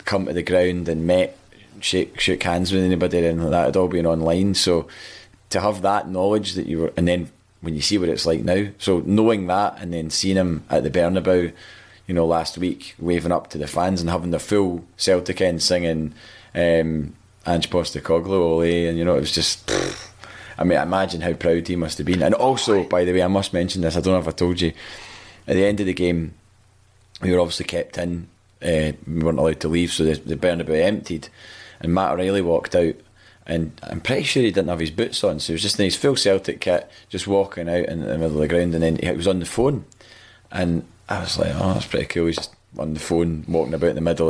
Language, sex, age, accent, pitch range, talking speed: English, male, 20-39, British, 85-95 Hz, 235 wpm